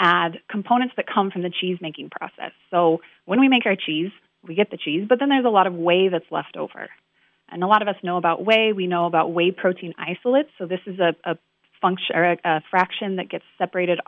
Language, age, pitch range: English, 30-49, 175-220 Hz